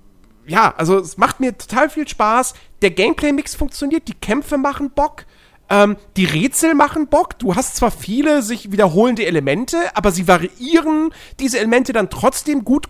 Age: 40-59